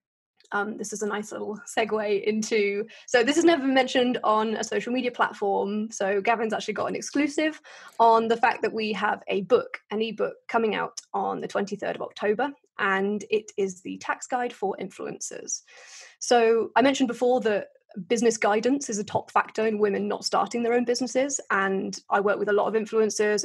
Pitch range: 205-245 Hz